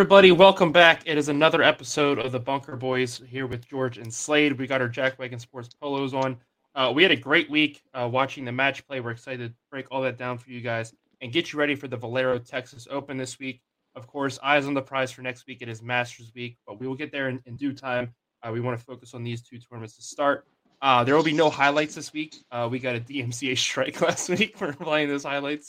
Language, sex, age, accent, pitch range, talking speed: English, male, 20-39, American, 125-150 Hz, 255 wpm